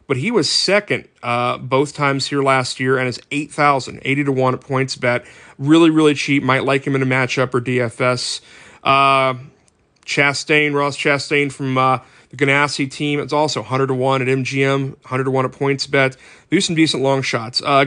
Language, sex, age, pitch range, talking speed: English, male, 30-49, 130-145 Hz, 175 wpm